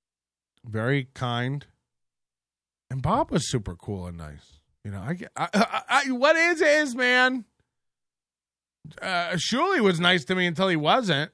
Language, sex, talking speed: English, male, 155 wpm